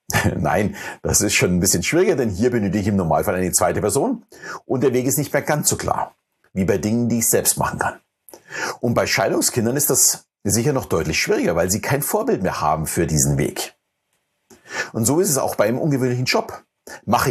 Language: German